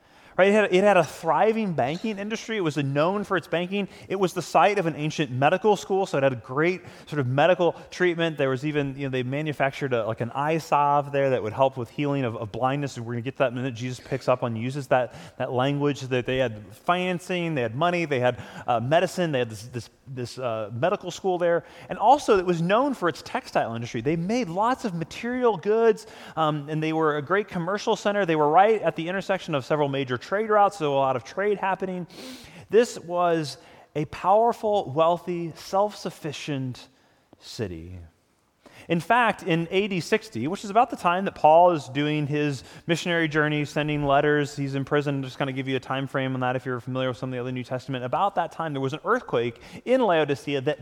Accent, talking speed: American, 215 wpm